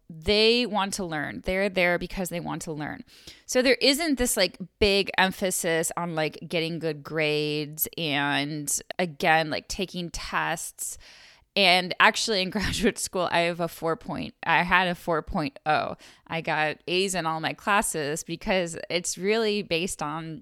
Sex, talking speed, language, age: female, 160 wpm, English, 10-29